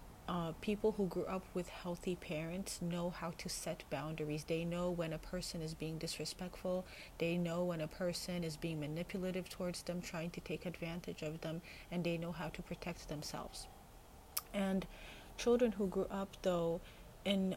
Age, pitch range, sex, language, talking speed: 30-49, 165-185 Hz, female, English, 175 wpm